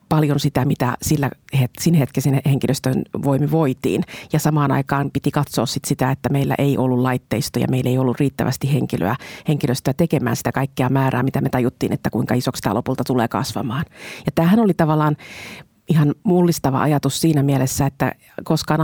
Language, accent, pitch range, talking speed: Finnish, native, 130-150 Hz, 170 wpm